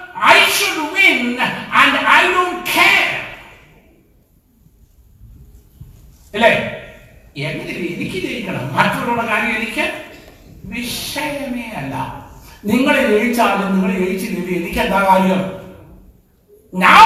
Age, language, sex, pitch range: 60-79, Malayalam, male, 185-300 Hz